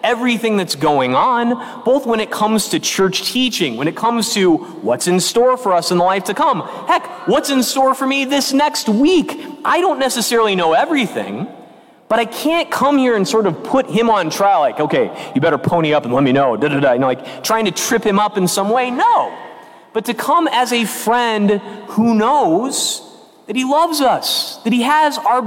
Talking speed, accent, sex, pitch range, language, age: 210 wpm, American, male, 195-255 Hz, English, 30-49